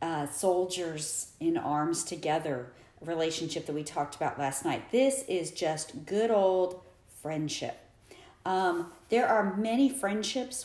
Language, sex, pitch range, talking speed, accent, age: English, female, 155-195 Hz, 115 wpm, American, 40-59